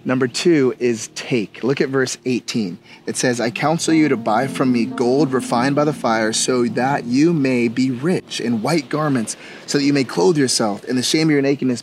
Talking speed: 220 wpm